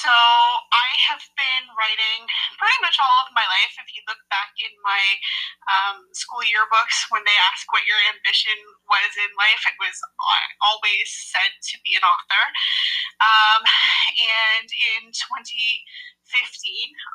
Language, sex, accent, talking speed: English, female, American, 145 wpm